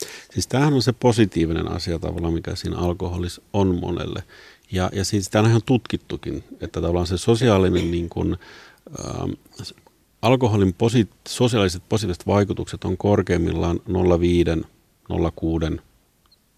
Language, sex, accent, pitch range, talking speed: Finnish, male, native, 85-115 Hz, 125 wpm